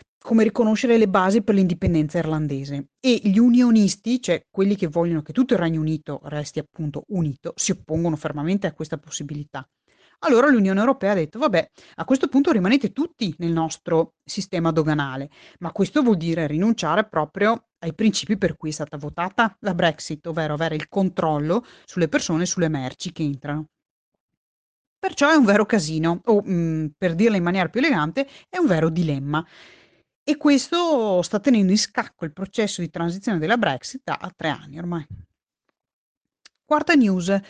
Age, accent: 30-49, native